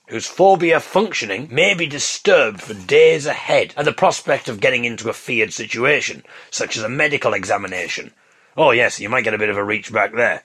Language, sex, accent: English, male, British